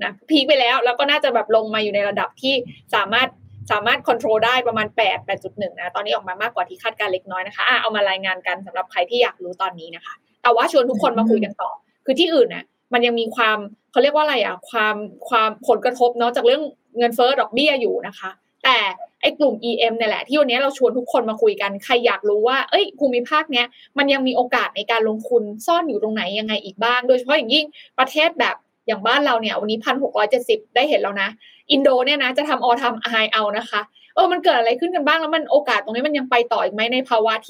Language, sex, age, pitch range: Thai, female, 20-39, 220-285 Hz